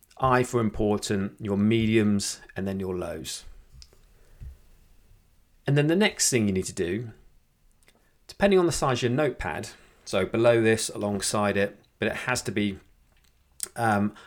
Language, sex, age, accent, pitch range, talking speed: English, male, 30-49, British, 95-120 Hz, 150 wpm